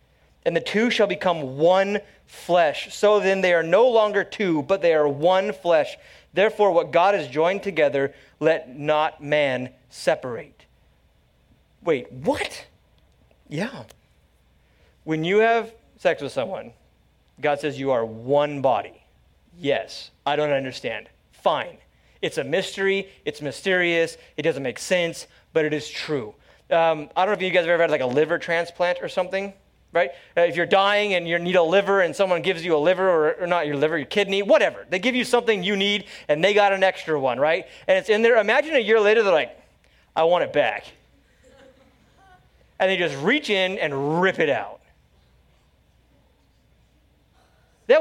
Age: 30-49